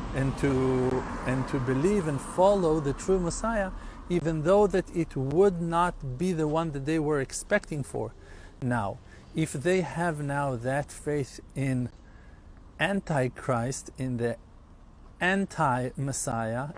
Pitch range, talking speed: 120-160 Hz, 130 wpm